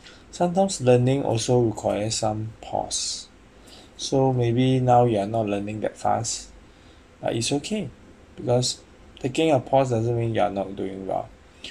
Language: English